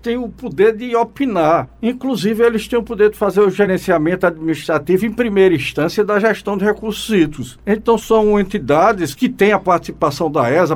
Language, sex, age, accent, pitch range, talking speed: Portuguese, male, 60-79, Brazilian, 165-230 Hz, 180 wpm